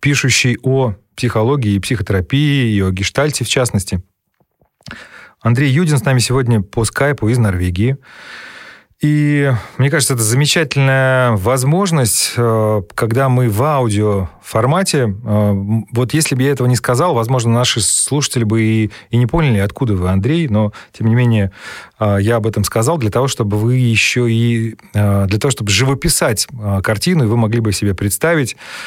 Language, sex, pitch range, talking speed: Russian, male, 110-140 Hz, 150 wpm